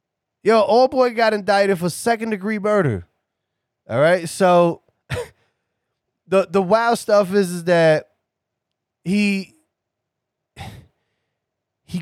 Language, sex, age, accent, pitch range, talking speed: English, male, 20-39, American, 145-210 Hz, 105 wpm